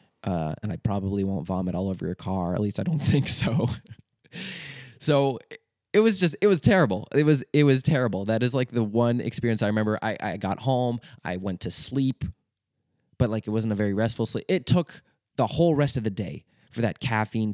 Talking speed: 215 wpm